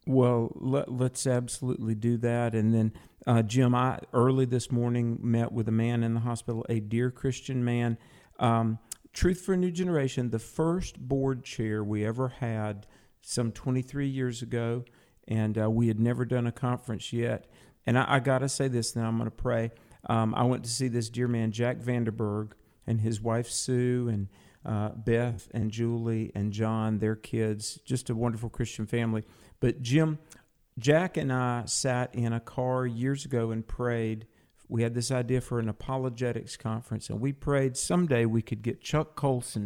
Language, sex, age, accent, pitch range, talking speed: English, male, 50-69, American, 110-125 Hz, 180 wpm